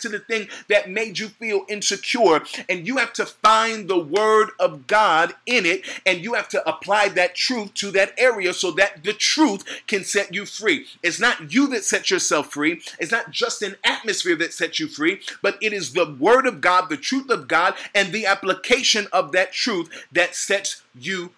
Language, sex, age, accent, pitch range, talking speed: English, male, 30-49, American, 160-230 Hz, 205 wpm